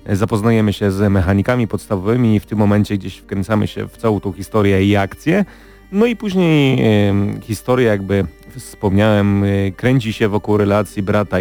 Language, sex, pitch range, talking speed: Polish, male, 100-120 Hz, 155 wpm